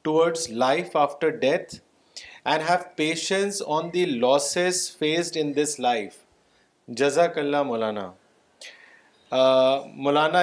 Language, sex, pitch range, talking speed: Urdu, male, 145-180 Hz, 105 wpm